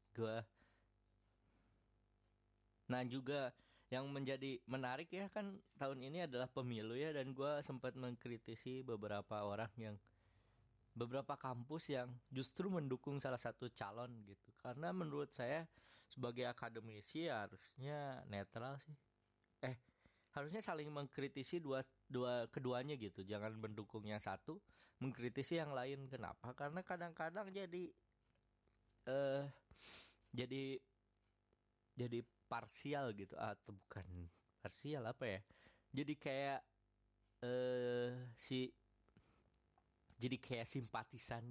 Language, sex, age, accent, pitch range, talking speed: Indonesian, male, 20-39, native, 110-140 Hz, 105 wpm